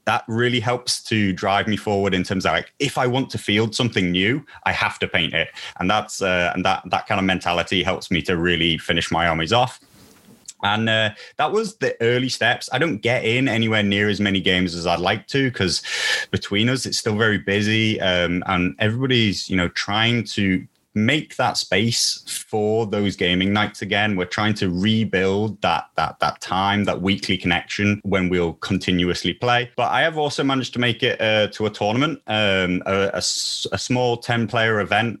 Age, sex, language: 30-49, male, English